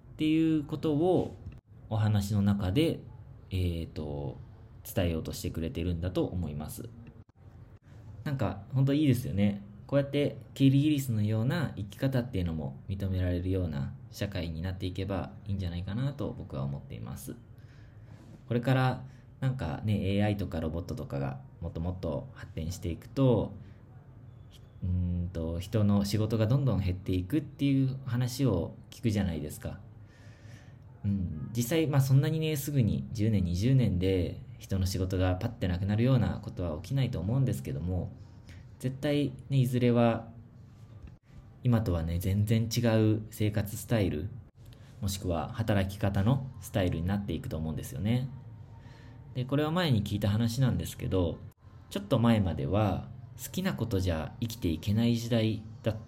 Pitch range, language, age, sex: 95-125 Hz, Japanese, 20-39, male